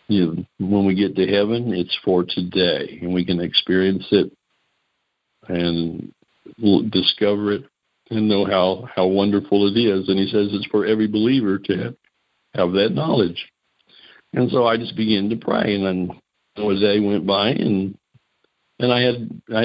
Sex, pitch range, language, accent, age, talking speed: male, 90-105 Hz, English, American, 60-79, 175 wpm